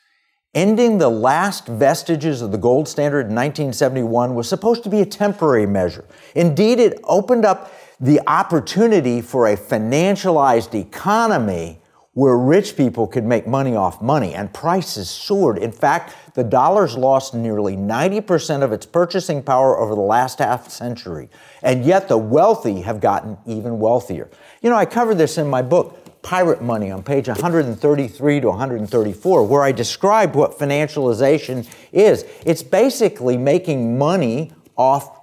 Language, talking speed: English, 150 wpm